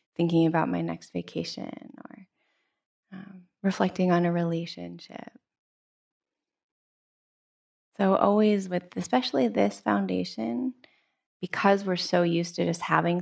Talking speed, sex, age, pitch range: 110 wpm, female, 20-39, 160-200 Hz